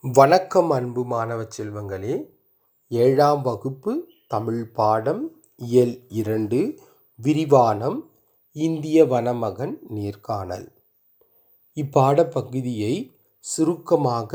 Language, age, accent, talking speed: Tamil, 30-49, native, 65 wpm